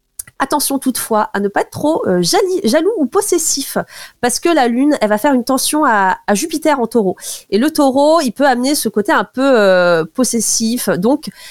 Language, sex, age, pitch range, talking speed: French, female, 30-49, 205-280 Hz, 200 wpm